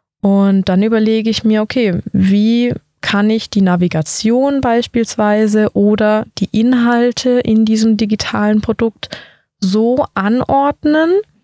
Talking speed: 110 wpm